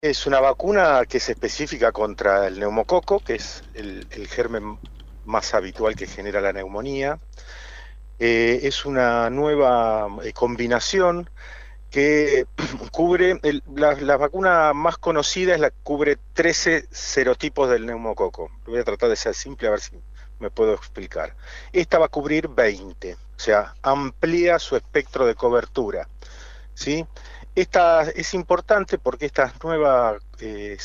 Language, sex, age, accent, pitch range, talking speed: Spanish, male, 40-59, Argentinian, 120-175 Hz, 145 wpm